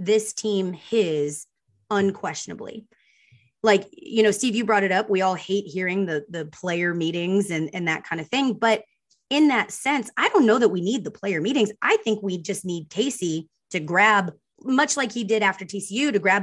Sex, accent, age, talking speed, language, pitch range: female, American, 20-39, 200 wpm, English, 185-240 Hz